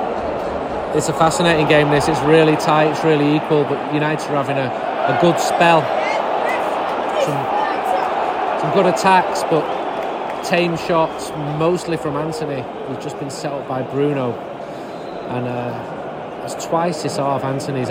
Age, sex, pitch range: 30-49, male, 150-205 Hz